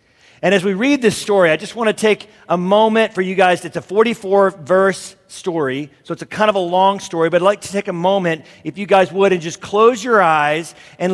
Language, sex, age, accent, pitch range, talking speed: English, male, 40-59, American, 140-195 Hz, 235 wpm